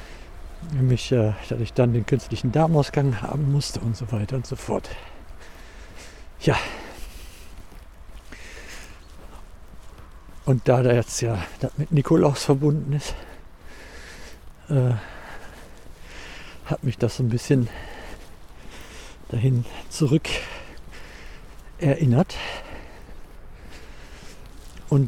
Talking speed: 90 wpm